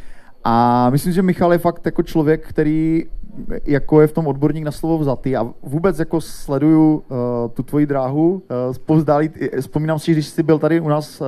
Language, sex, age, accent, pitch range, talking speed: Czech, male, 30-49, native, 140-160 Hz, 185 wpm